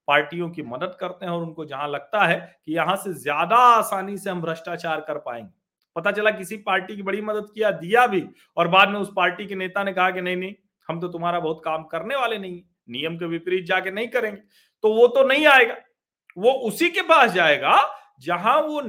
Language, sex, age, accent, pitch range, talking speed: Hindi, male, 40-59, native, 150-200 Hz, 170 wpm